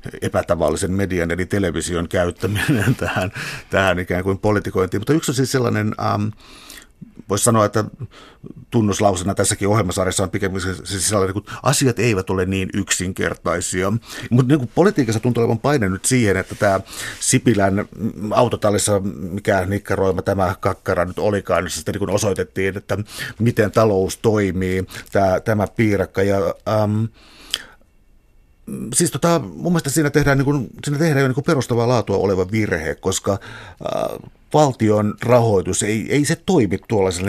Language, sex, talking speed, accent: Finnish, male, 135 wpm, native